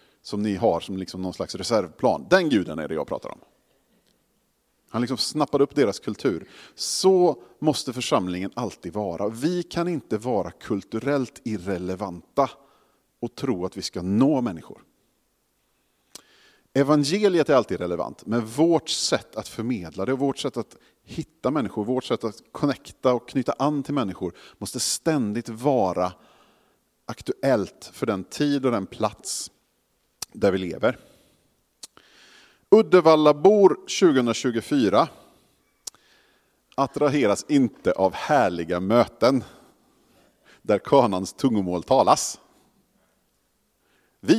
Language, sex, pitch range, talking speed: Swedish, male, 105-160 Hz, 120 wpm